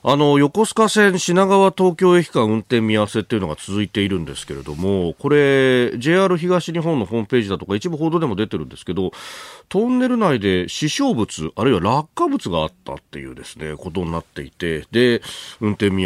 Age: 40-59